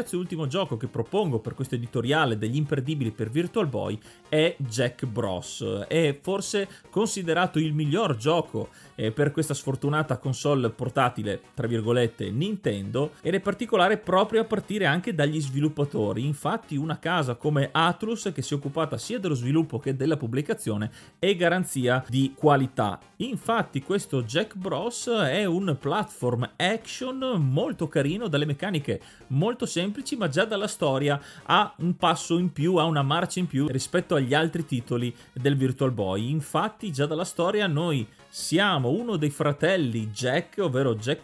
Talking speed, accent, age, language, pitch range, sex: 150 wpm, native, 30-49, Italian, 130-175 Hz, male